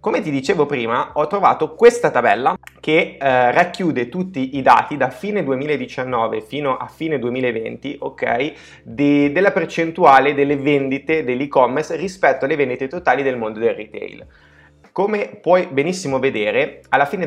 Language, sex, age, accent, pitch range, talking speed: Italian, male, 30-49, native, 120-155 Hz, 145 wpm